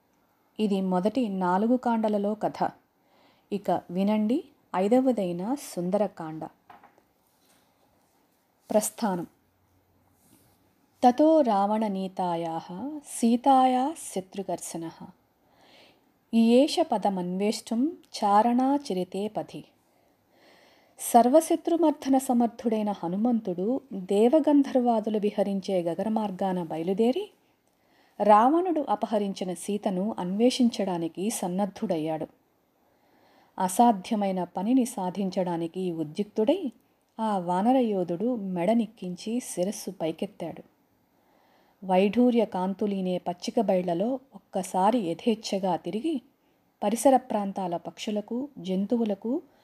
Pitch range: 185-245 Hz